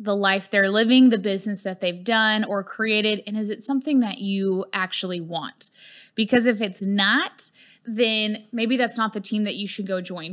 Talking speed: 200 wpm